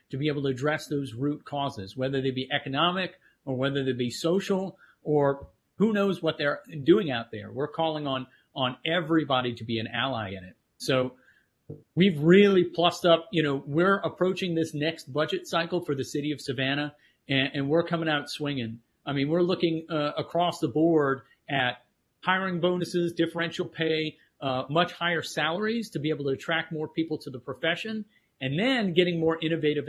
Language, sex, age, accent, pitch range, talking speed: English, male, 40-59, American, 145-175 Hz, 185 wpm